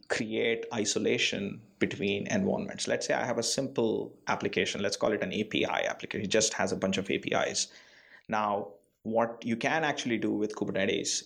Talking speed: 170 wpm